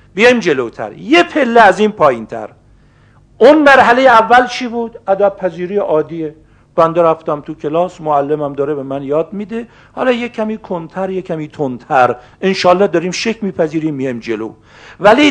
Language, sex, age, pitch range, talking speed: Persian, male, 50-69, 140-195 Hz, 155 wpm